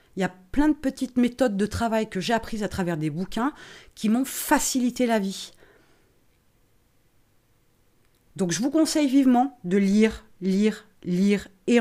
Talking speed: 160 wpm